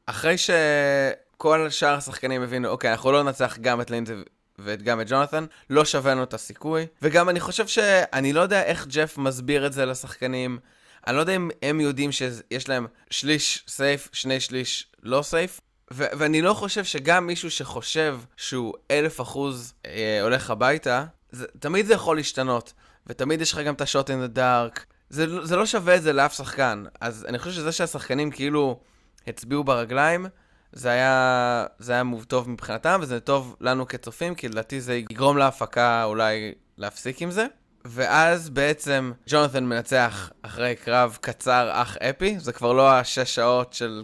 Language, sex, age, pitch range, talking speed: Hebrew, male, 20-39, 120-145 Hz, 170 wpm